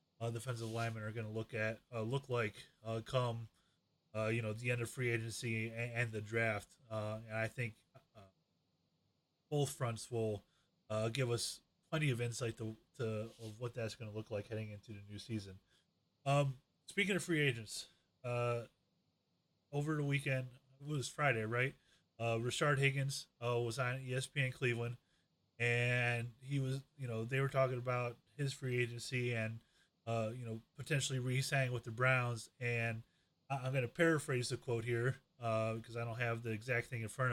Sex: male